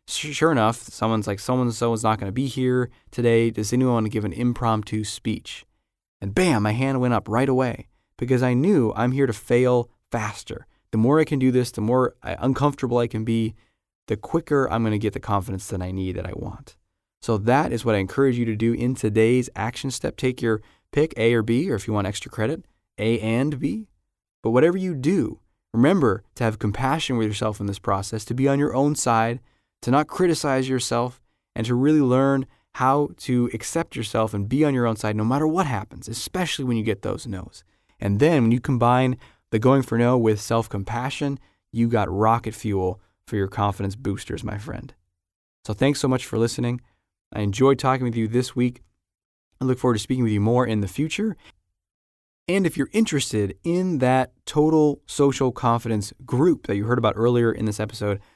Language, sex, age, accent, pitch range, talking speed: English, male, 20-39, American, 105-130 Hz, 205 wpm